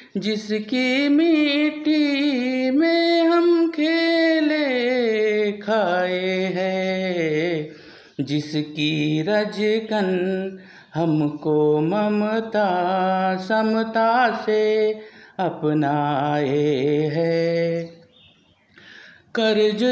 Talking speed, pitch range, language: 40 wpm, 170-255 Hz, Marathi